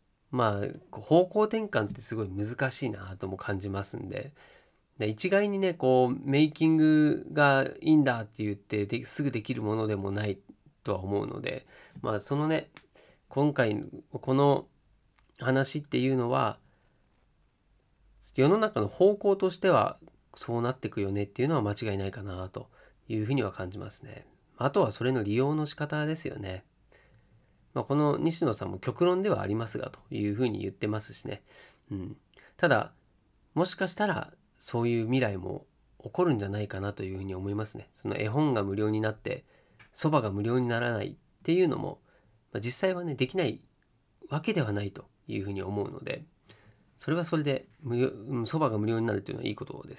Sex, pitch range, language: male, 105-150 Hz, Japanese